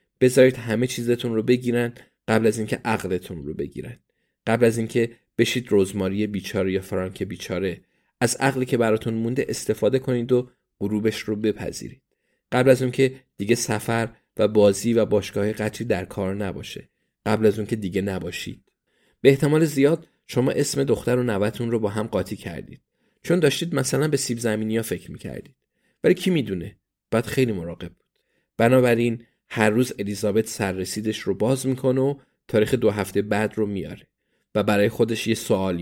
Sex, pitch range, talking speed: male, 100-125 Hz, 165 wpm